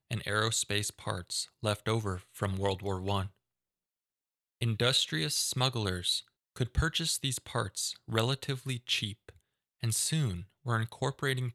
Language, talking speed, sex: English, 110 wpm, male